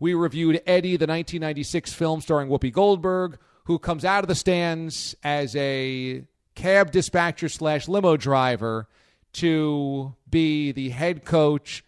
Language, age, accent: English, 40-59, American